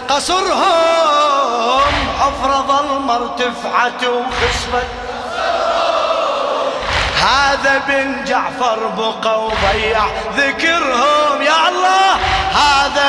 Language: Arabic